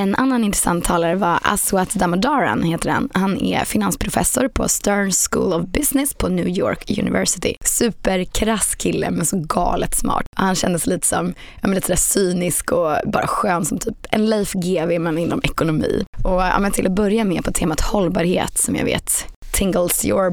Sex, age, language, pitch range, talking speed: female, 20-39, Swedish, 175-220 Hz, 180 wpm